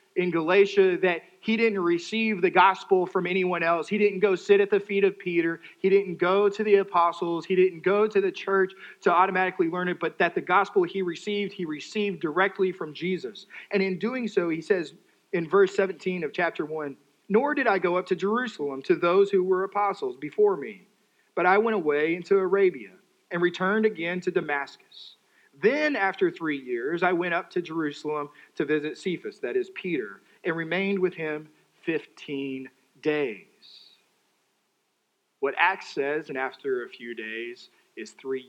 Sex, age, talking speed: male, 40-59, 180 wpm